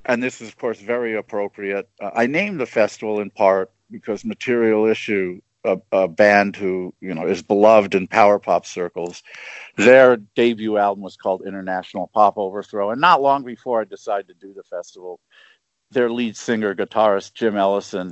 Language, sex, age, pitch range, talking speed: English, male, 50-69, 100-125 Hz, 175 wpm